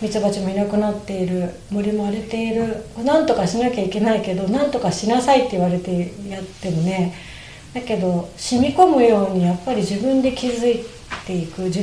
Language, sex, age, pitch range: Japanese, female, 30-49, 190-250 Hz